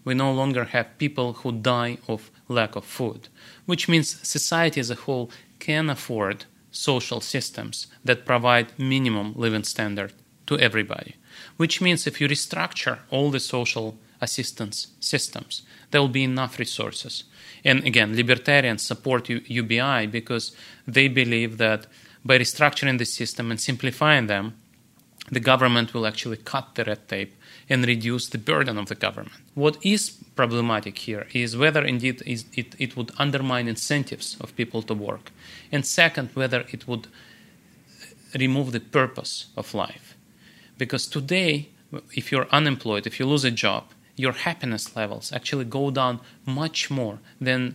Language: English